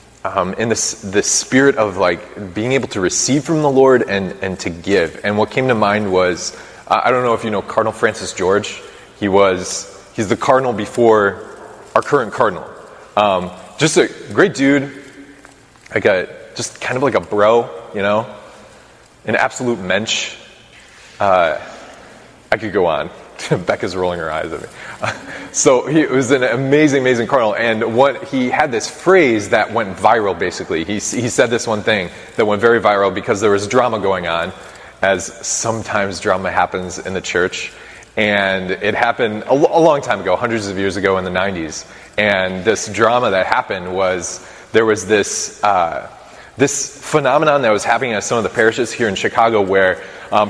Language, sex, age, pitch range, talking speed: English, male, 20-39, 95-130 Hz, 180 wpm